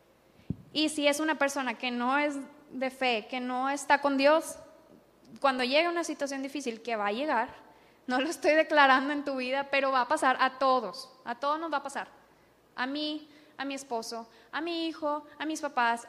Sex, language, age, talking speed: female, English, 10-29, 200 wpm